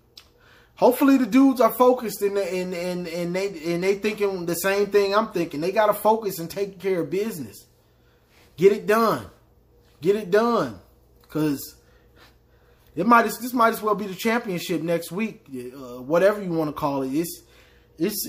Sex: male